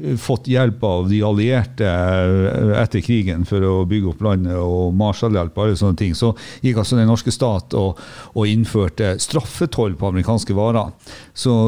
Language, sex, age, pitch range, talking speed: English, male, 50-69, 95-115 Hz, 155 wpm